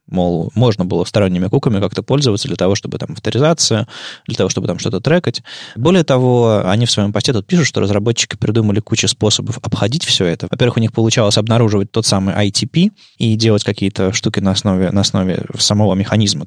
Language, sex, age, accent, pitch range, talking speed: Russian, male, 20-39, native, 105-135 Hz, 190 wpm